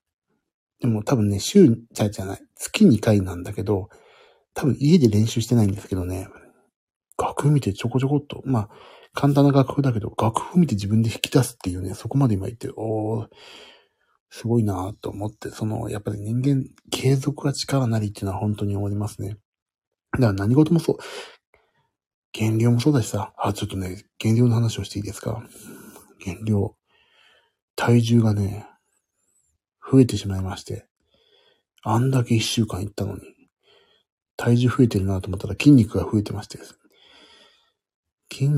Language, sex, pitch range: Japanese, male, 100-125 Hz